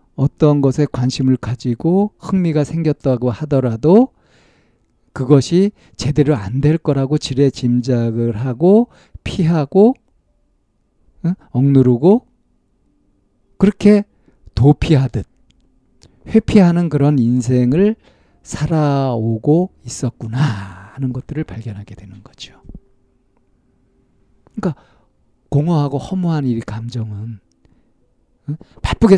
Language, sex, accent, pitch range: Korean, male, native, 115-155 Hz